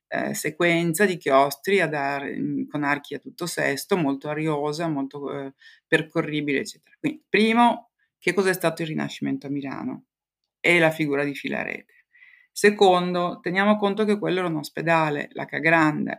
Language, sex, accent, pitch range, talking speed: Italian, female, native, 150-185 Hz, 145 wpm